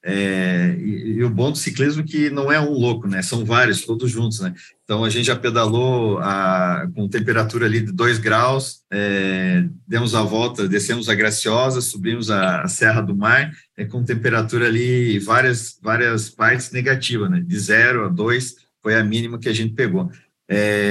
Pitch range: 105-125 Hz